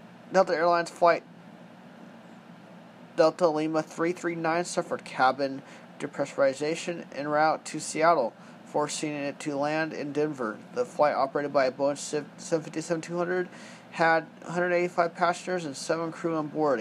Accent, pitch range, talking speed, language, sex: American, 155-180 Hz, 120 wpm, English, male